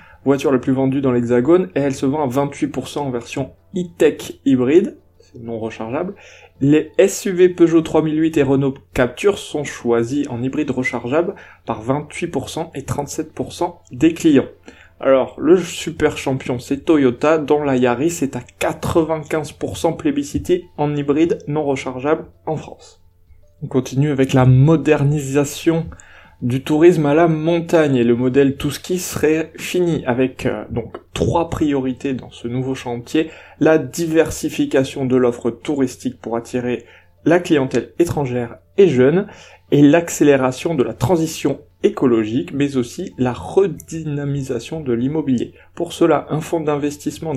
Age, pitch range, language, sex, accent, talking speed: 20-39, 125-160 Hz, French, male, French, 140 wpm